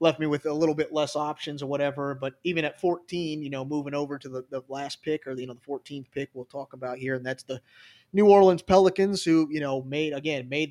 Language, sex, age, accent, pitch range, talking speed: English, male, 30-49, American, 130-150 Hz, 260 wpm